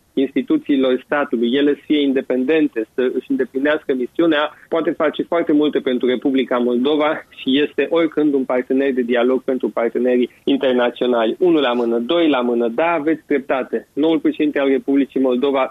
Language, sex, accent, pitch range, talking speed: Romanian, male, native, 130-150 Hz, 155 wpm